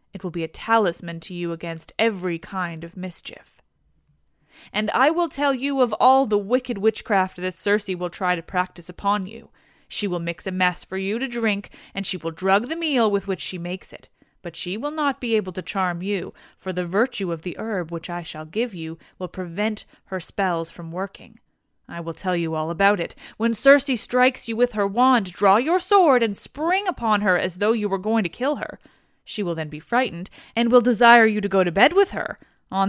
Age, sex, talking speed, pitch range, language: 20-39, female, 220 wpm, 180-250 Hz, English